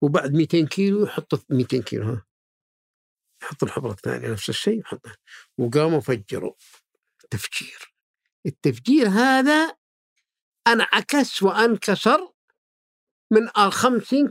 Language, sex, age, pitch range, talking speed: Arabic, male, 50-69, 140-215 Hz, 90 wpm